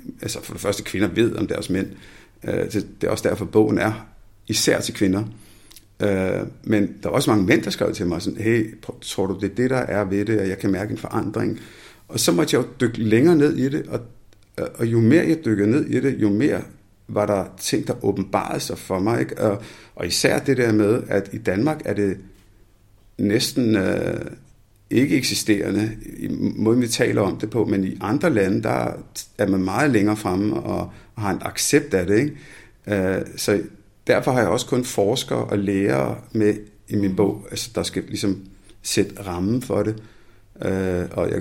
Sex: male